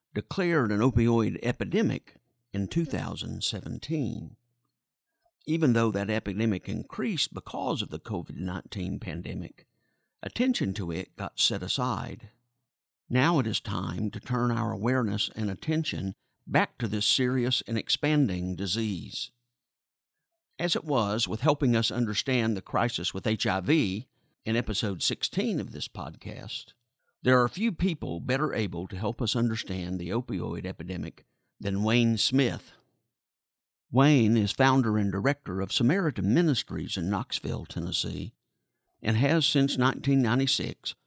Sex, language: male, English